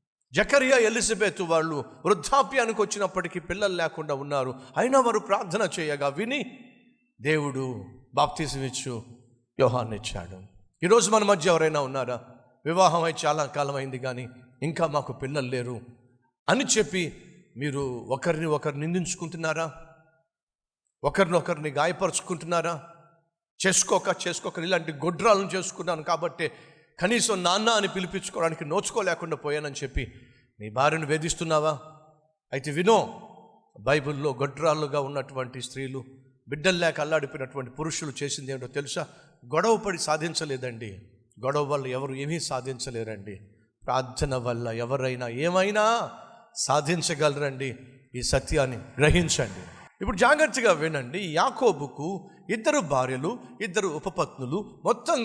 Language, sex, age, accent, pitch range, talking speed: Telugu, male, 50-69, native, 135-180 Hz, 100 wpm